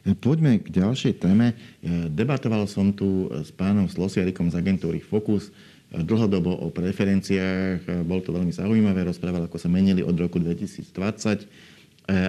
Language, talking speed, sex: Slovak, 140 wpm, male